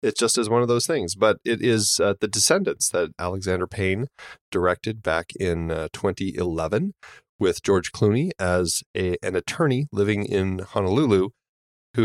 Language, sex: English, male